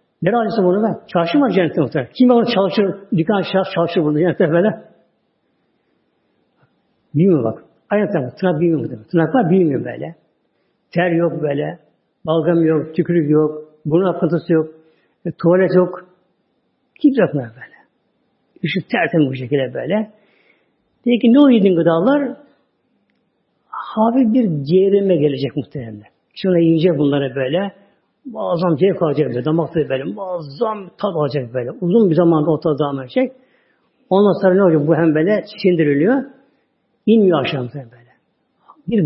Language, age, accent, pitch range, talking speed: Turkish, 60-79, native, 155-210 Hz, 140 wpm